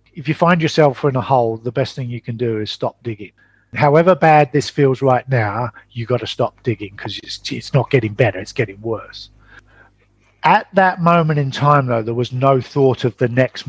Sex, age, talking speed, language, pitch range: male, 50-69, 210 wpm, English, 115-145 Hz